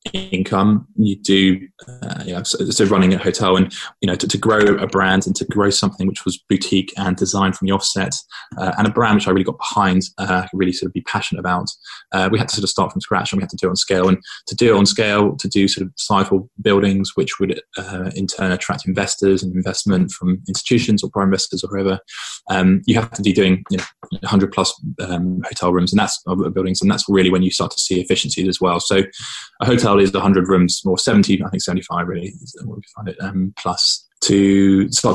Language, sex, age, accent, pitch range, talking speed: English, male, 20-39, British, 95-105 Hz, 240 wpm